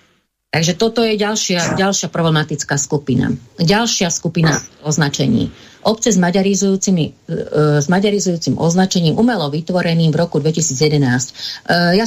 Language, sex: Slovak, female